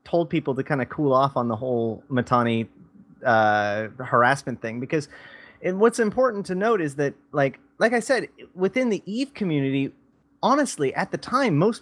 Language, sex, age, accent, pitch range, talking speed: English, male, 30-49, American, 120-155 Hz, 175 wpm